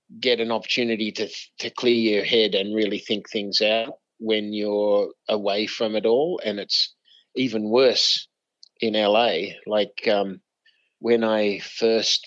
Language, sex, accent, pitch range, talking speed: English, male, Australian, 100-115 Hz, 145 wpm